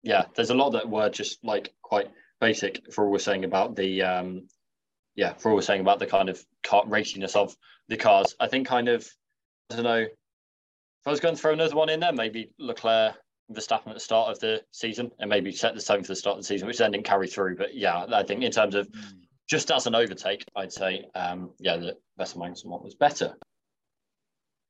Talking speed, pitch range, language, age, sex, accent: 230 wpm, 100-125 Hz, English, 20-39, male, British